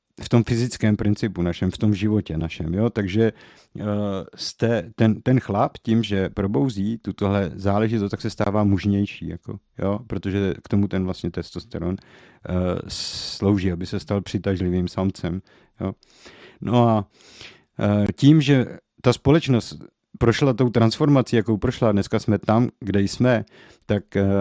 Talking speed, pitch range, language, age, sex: 145 wpm, 95-115 Hz, Czech, 50-69, male